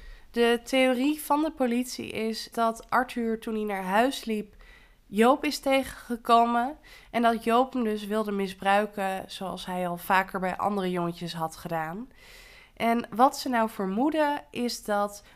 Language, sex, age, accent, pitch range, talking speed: Dutch, female, 20-39, Dutch, 195-250 Hz, 150 wpm